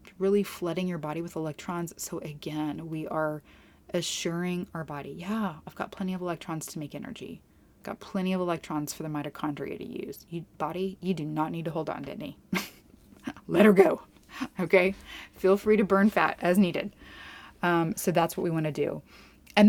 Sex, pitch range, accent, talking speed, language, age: female, 160-205 Hz, American, 190 wpm, English, 20-39